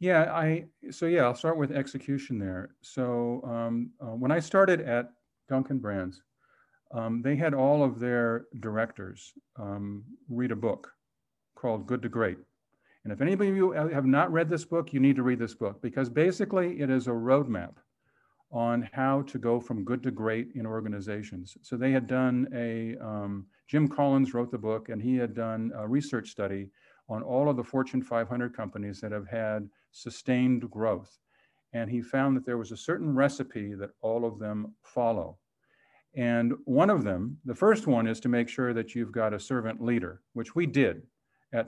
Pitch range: 110-135 Hz